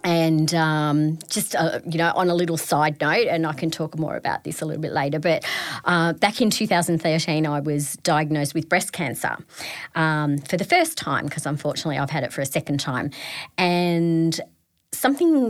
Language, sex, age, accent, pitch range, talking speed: English, female, 30-49, Australian, 150-190 Hz, 190 wpm